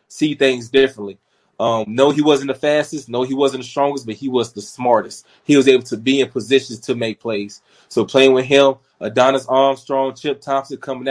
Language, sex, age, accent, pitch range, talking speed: English, male, 20-39, American, 120-140 Hz, 205 wpm